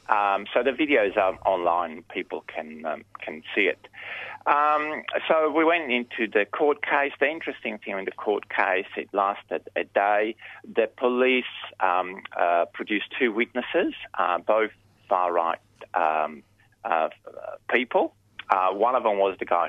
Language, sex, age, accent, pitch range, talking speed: English, male, 30-49, Australian, 100-155 Hz, 155 wpm